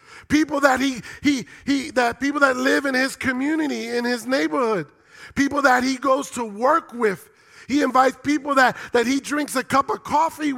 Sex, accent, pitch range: male, American, 220-275 Hz